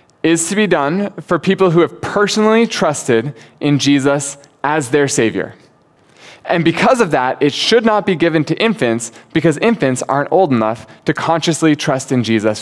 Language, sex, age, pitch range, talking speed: English, male, 20-39, 130-175 Hz, 170 wpm